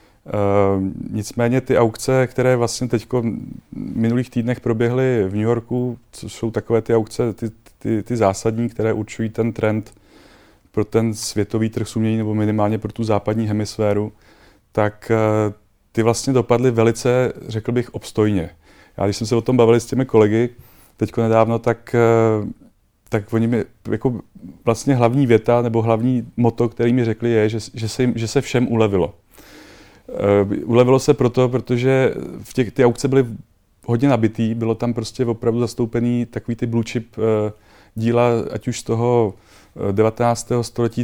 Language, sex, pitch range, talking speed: Czech, male, 105-120 Hz, 160 wpm